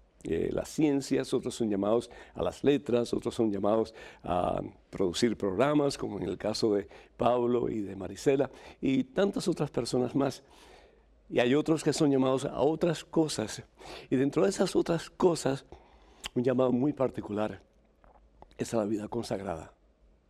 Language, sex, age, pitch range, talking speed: Spanish, male, 60-79, 105-135 Hz, 155 wpm